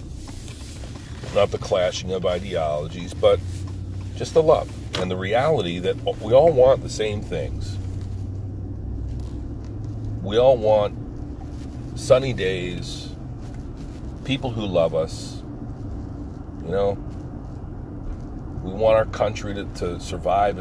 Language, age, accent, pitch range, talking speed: English, 40-59, American, 95-110 Hz, 110 wpm